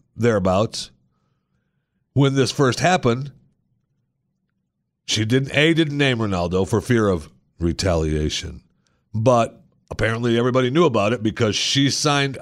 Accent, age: American, 50-69